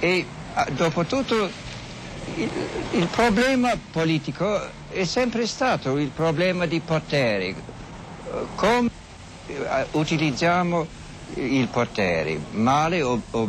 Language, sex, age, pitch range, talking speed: Italian, male, 60-79, 125-195 Hz, 95 wpm